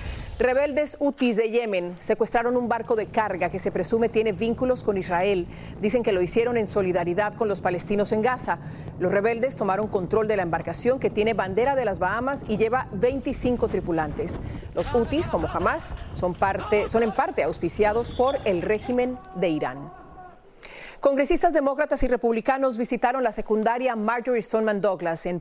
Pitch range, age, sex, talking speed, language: 190-245 Hz, 40-59, female, 165 wpm, Spanish